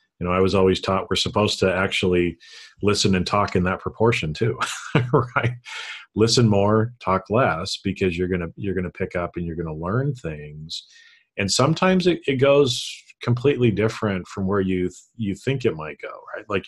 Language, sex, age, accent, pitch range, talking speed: English, male, 40-59, American, 90-110 Hz, 200 wpm